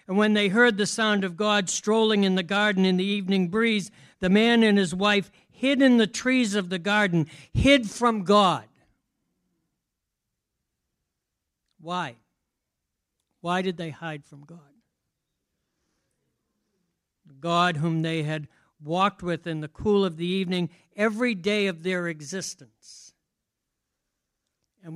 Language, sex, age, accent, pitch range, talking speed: English, male, 60-79, American, 145-190 Hz, 135 wpm